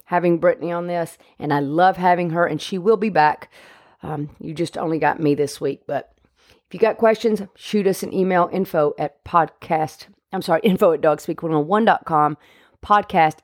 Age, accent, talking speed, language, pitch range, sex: 40-59, American, 180 wpm, English, 155-185 Hz, female